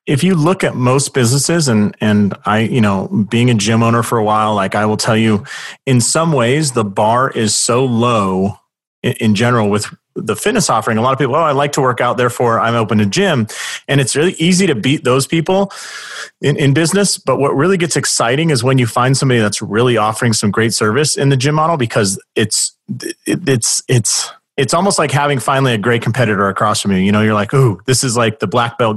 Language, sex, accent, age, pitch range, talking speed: English, male, American, 30-49, 110-140 Hz, 230 wpm